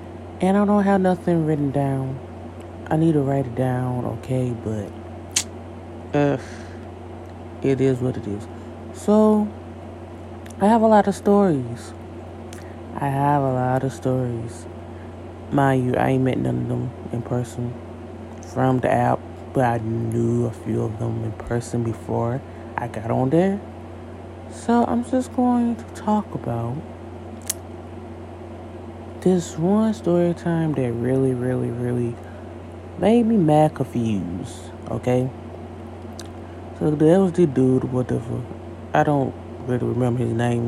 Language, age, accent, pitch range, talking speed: English, 20-39, American, 105-145 Hz, 135 wpm